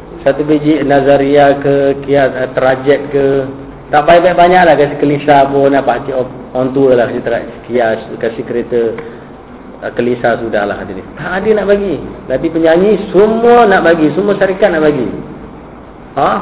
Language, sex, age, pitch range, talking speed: Malay, male, 40-59, 130-160 Hz, 145 wpm